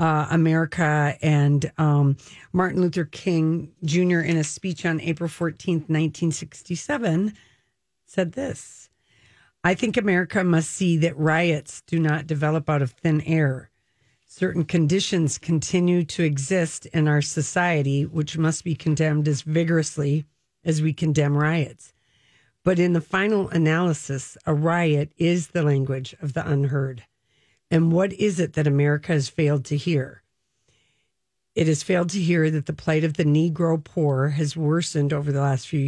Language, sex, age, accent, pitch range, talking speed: English, female, 50-69, American, 145-170 Hz, 150 wpm